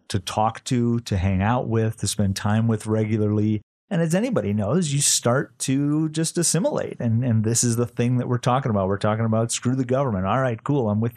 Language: English